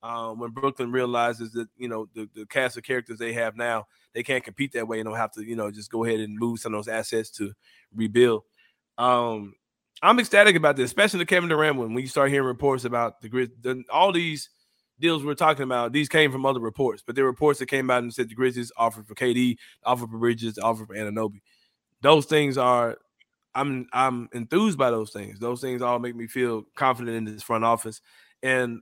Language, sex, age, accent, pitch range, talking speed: English, male, 20-39, American, 115-135 Hz, 220 wpm